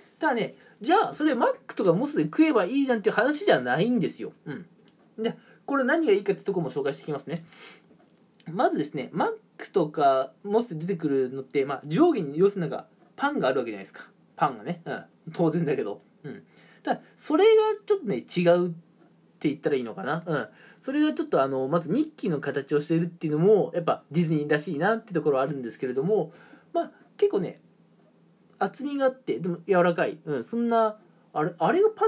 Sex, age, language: male, 20-39, Japanese